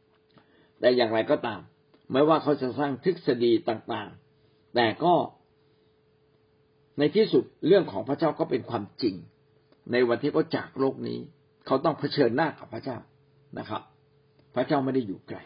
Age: 60-79